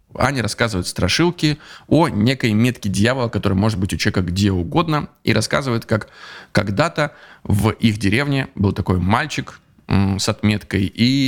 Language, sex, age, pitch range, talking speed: Russian, male, 20-39, 100-125 Hz, 145 wpm